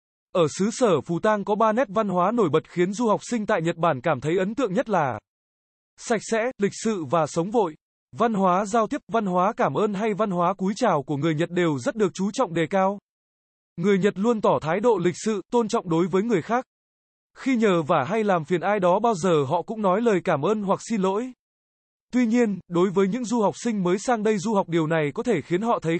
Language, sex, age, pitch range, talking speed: Vietnamese, male, 20-39, 170-225 Hz, 250 wpm